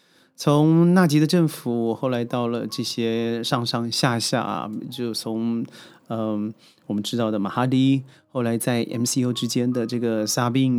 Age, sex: 30-49, male